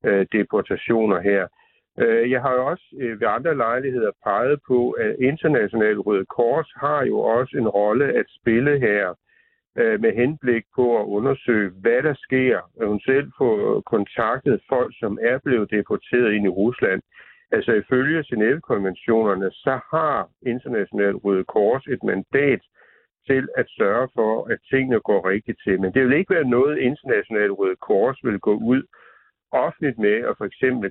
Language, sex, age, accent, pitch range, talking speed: Danish, male, 60-79, native, 105-135 Hz, 155 wpm